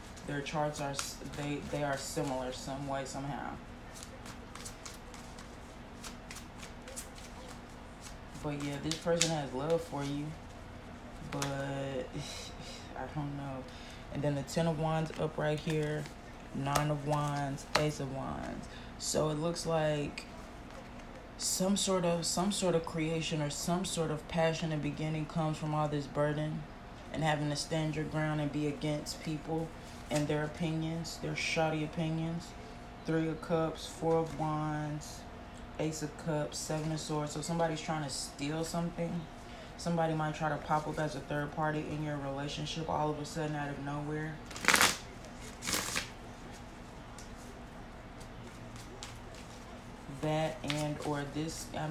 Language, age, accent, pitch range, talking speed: English, 20-39, American, 145-160 Hz, 140 wpm